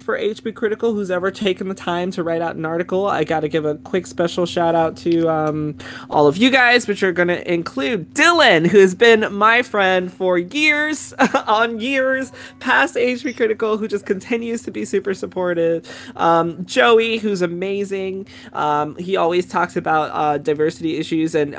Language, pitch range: English, 150-200 Hz